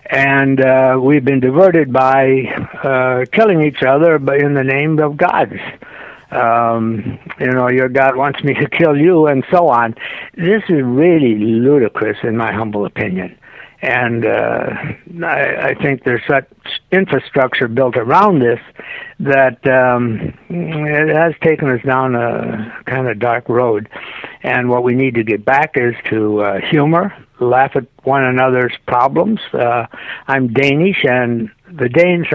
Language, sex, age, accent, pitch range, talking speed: English, male, 60-79, American, 120-150 Hz, 150 wpm